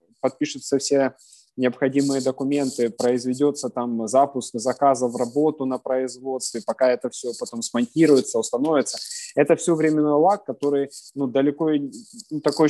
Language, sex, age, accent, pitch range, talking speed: Ukrainian, male, 20-39, native, 120-145 Hz, 130 wpm